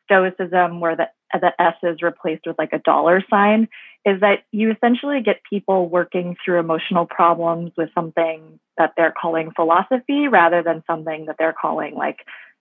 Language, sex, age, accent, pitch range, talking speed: English, female, 20-39, American, 165-195 Hz, 165 wpm